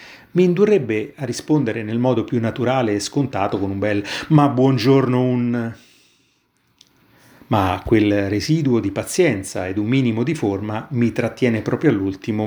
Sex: male